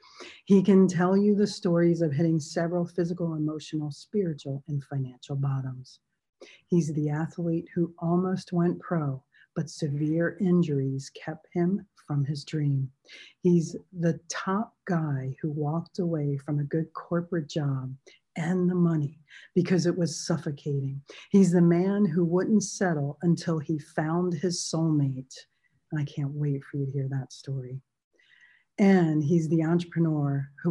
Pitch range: 145-175 Hz